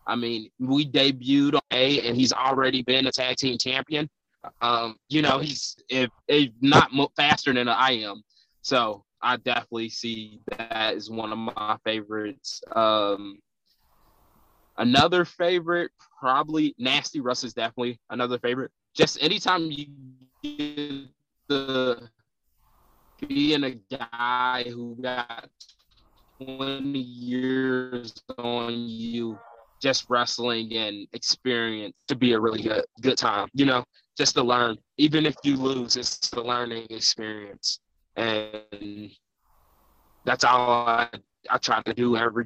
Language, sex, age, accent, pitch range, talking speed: English, male, 20-39, American, 110-130 Hz, 130 wpm